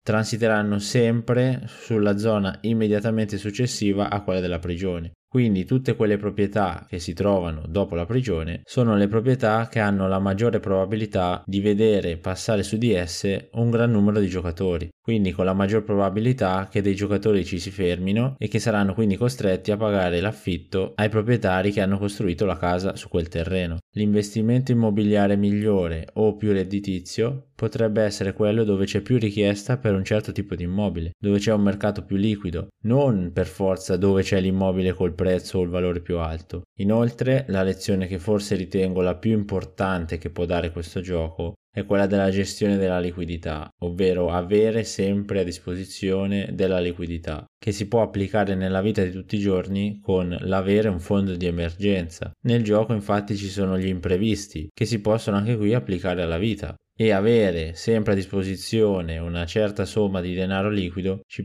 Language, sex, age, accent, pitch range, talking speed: Italian, male, 20-39, native, 90-110 Hz, 170 wpm